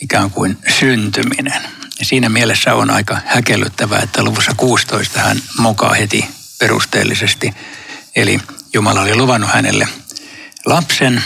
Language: Finnish